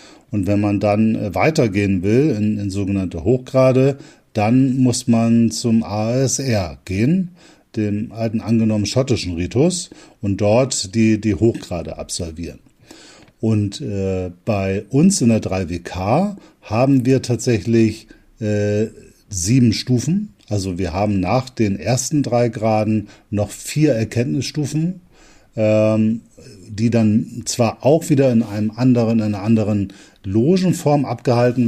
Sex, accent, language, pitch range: male, German, German, 105-125 Hz